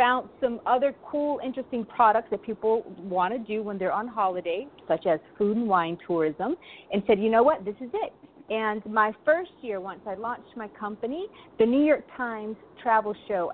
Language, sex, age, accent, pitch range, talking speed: English, female, 30-49, American, 190-255 Hz, 195 wpm